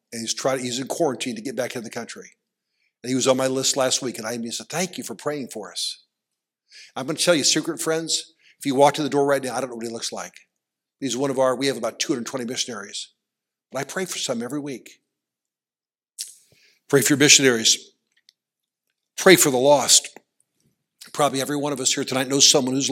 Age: 60-79